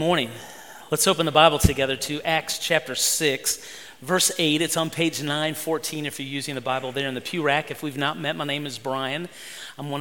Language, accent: English, American